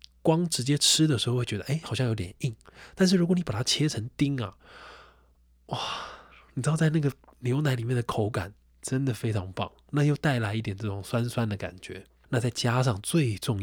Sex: male